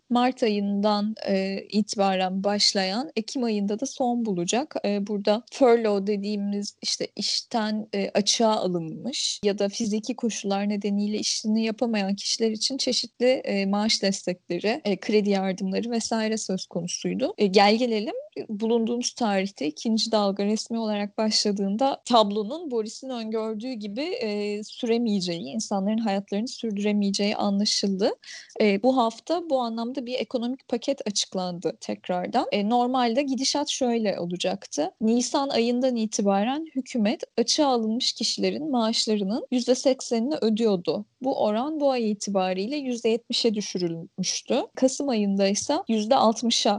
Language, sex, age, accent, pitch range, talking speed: Turkish, female, 10-29, native, 200-245 Hz, 115 wpm